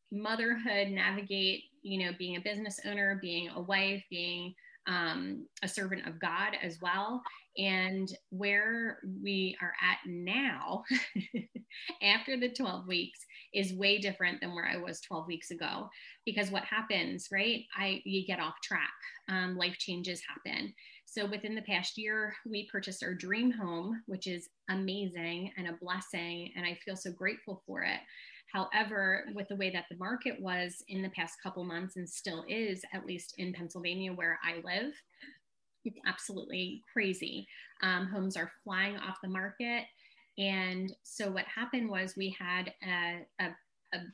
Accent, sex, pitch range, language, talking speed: American, female, 180-210 Hz, English, 160 wpm